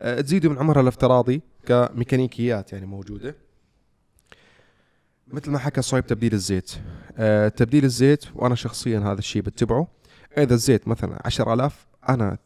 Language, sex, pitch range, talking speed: Arabic, male, 100-120 Hz, 125 wpm